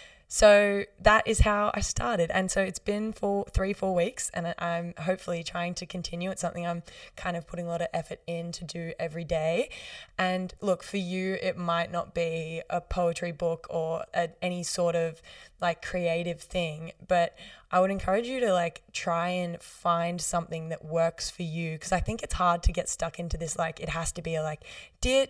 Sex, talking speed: female, 205 wpm